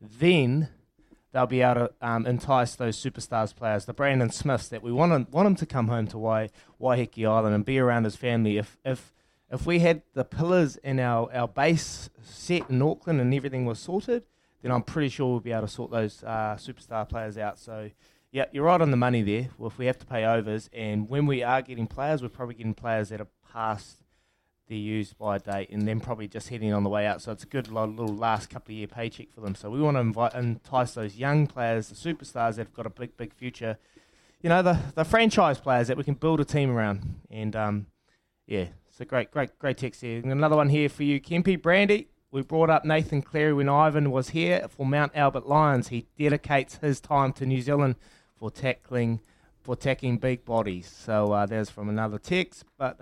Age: 20-39